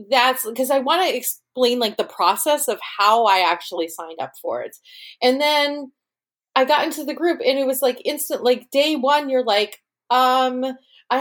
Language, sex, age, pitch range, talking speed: English, female, 30-49, 210-285 Hz, 195 wpm